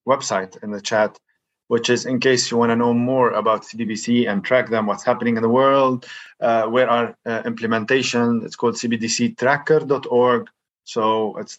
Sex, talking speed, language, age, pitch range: male, 170 wpm, English, 20-39, 105-125 Hz